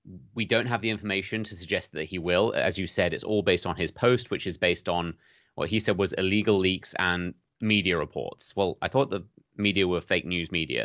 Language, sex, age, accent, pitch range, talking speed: English, male, 30-49, British, 90-110 Hz, 225 wpm